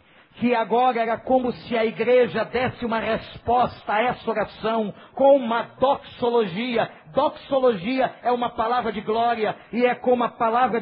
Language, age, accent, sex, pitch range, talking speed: Portuguese, 50-69, Brazilian, male, 190-270 Hz, 150 wpm